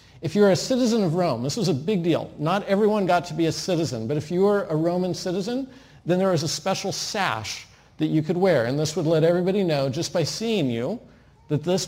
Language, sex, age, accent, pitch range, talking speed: English, male, 50-69, American, 140-180 Hz, 235 wpm